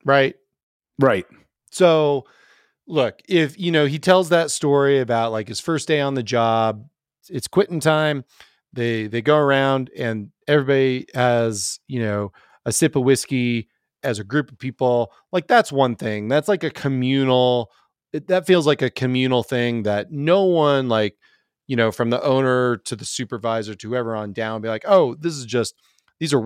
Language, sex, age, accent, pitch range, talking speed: English, male, 30-49, American, 115-150 Hz, 180 wpm